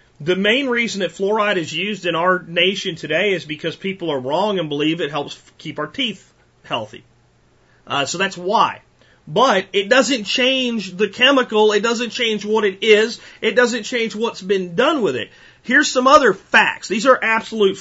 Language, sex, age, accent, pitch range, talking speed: English, male, 40-59, American, 165-220 Hz, 185 wpm